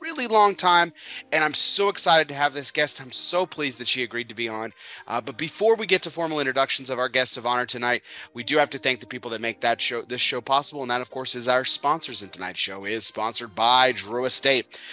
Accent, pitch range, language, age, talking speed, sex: American, 115-150 Hz, English, 30-49, 255 wpm, male